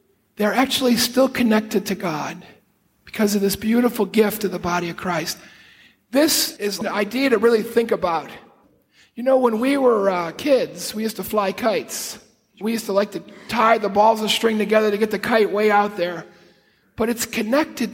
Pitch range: 195-240 Hz